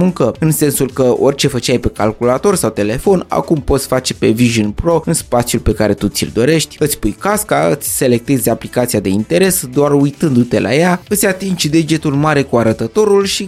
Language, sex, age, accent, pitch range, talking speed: Romanian, male, 20-39, native, 120-165 Hz, 185 wpm